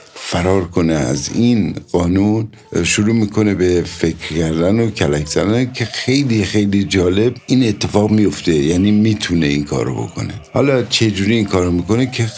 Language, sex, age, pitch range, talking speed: Persian, male, 60-79, 90-120 Hz, 150 wpm